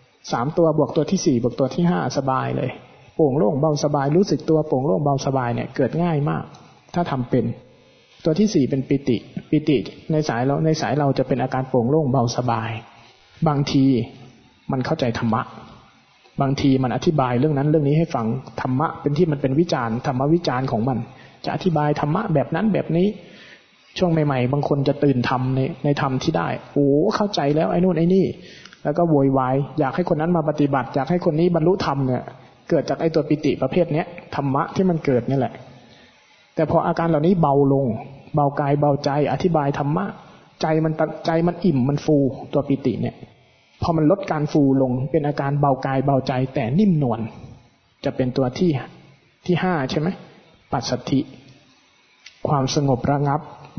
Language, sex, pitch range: Thai, male, 130-160 Hz